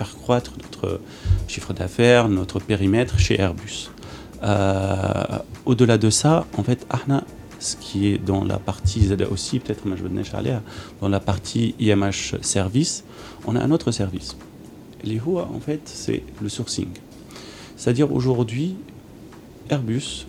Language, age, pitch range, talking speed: Arabic, 40-59, 100-125 Hz, 150 wpm